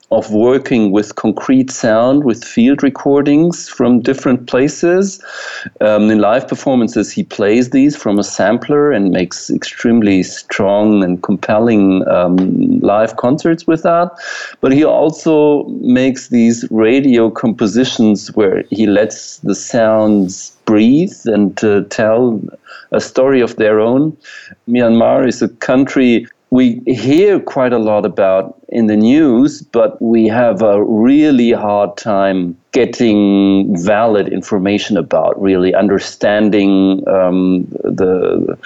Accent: German